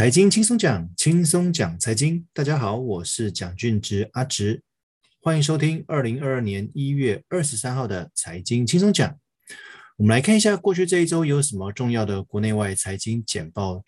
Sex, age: male, 20-39